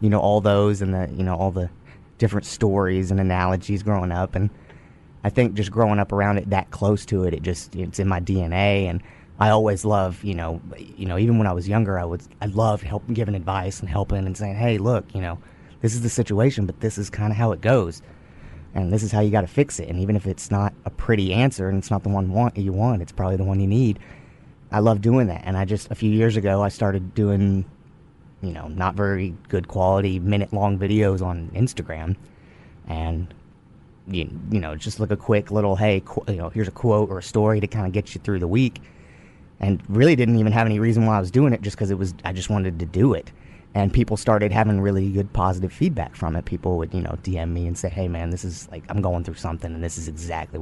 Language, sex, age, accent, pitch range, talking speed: English, male, 30-49, American, 90-105 Hz, 245 wpm